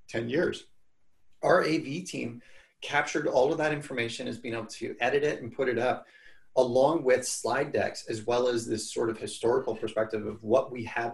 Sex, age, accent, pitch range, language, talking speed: male, 30-49, American, 115-140 Hz, English, 195 wpm